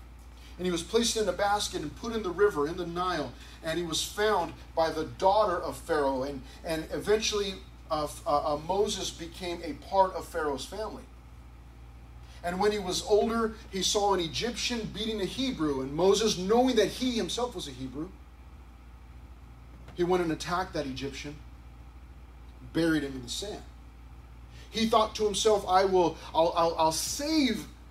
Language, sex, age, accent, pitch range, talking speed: English, male, 30-49, American, 135-210 Hz, 170 wpm